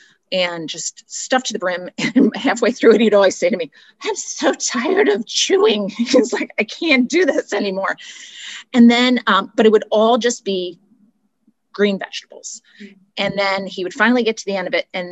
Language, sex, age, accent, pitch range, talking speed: English, female, 30-49, American, 185-260 Hz, 200 wpm